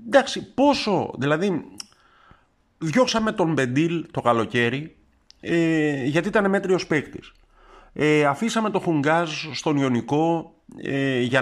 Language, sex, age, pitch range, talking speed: Greek, male, 50-69, 125-175 Hz, 110 wpm